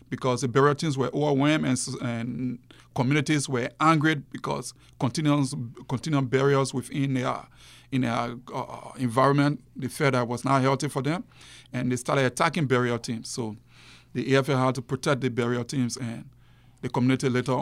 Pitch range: 125-140 Hz